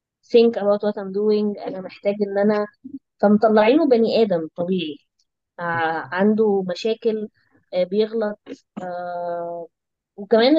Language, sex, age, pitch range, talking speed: Arabic, female, 20-39, 200-255 Hz, 95 wpm